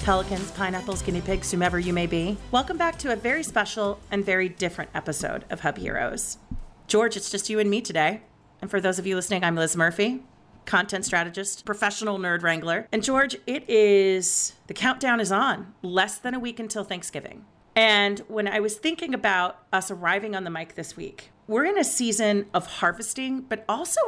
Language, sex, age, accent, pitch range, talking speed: English, female, 40-59, American, 175-220 Hz, 190 wpm